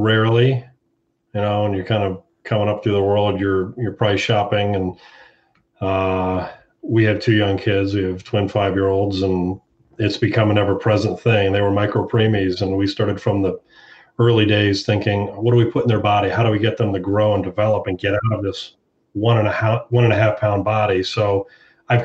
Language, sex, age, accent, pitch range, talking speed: English, male, 40-59, American, 100-110 Hz, 210 wpm